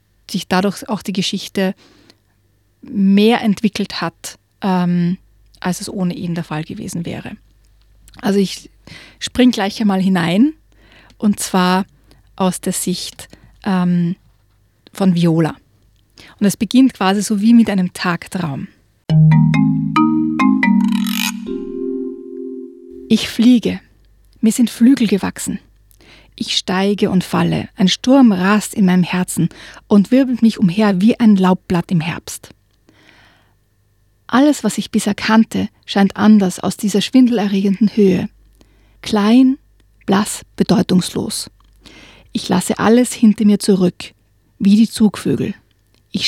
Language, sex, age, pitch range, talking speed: German, female, 30-49, 165-215 Hz, 115 wpm